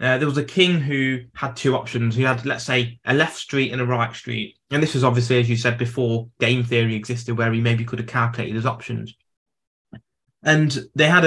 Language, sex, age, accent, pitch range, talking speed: English, male, 20-39, British, 120-150 Hz, 225 wpm